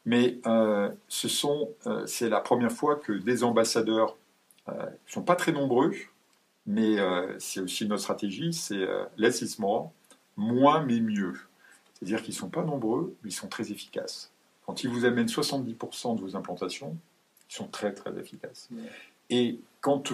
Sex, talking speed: male, 165 wpm